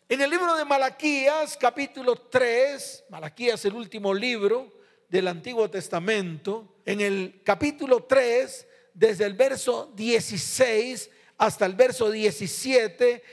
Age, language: 40-59, Spanish